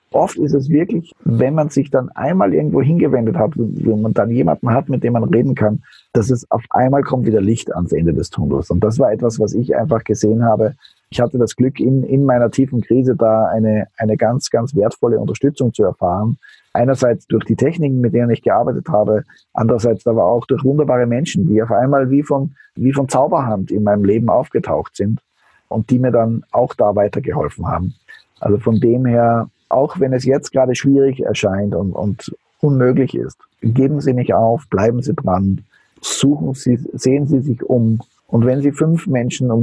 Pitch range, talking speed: 110-135 Hz, 195 wpm